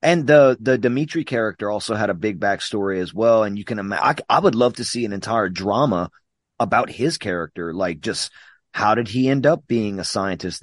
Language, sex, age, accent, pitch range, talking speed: English, male, 30-49, American, 100-130 Hz, 220 wpm